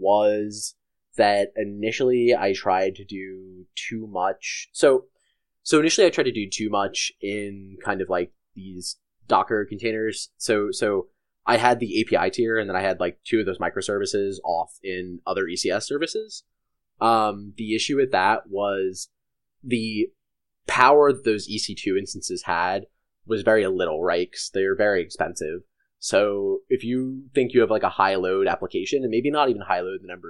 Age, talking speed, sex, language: 20-39, 170 wpm, male, English